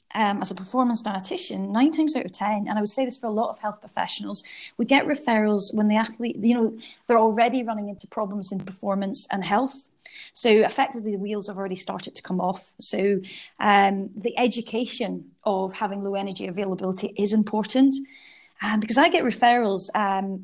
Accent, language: British, English